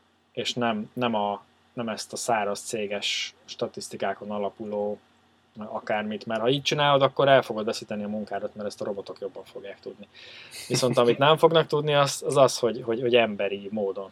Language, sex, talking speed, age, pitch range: Hungarian, male, 180 wpm, 20-39, 110-145 Hz